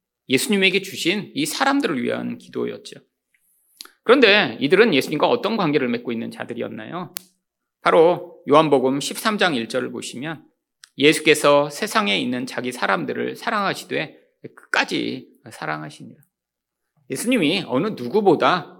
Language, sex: Korean, male